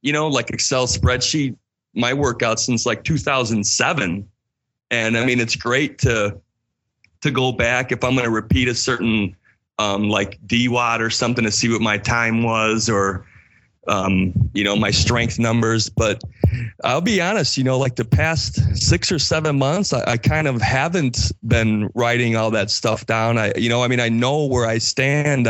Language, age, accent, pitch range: English, 30-49, American, 105-125 Hz